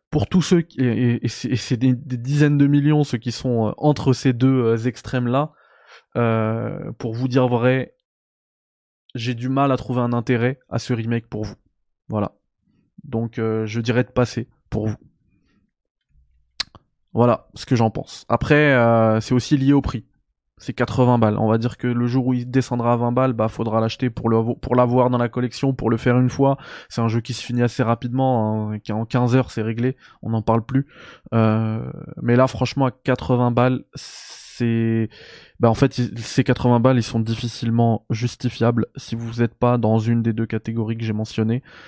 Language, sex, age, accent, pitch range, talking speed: French, male, 20-39, French, 115-130 Hz, 200 wpm